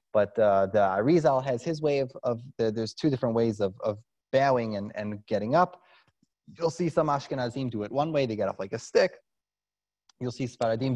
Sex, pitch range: male, 105-130 Hz